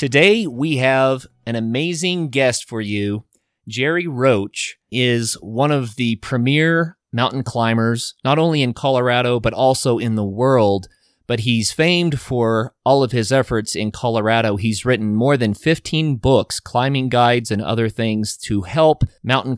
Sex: male